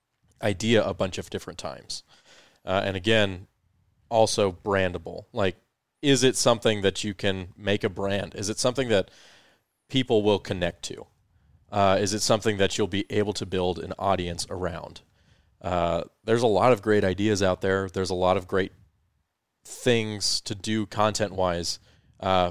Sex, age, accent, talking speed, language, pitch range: male, 20-39, American, 165 wpm, English, 95-110 Hz